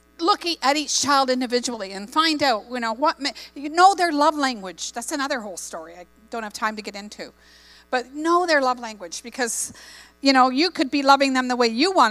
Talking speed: 225 wpm